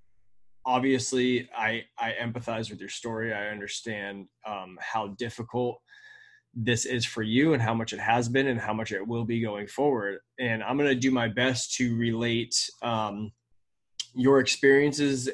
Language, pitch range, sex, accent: English, 110-130 Hz, male, American